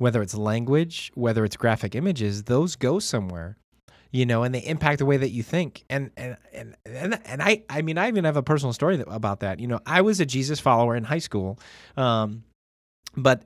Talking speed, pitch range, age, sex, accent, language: 215 wpm, 110-140 Hz, 20-39, male, American, English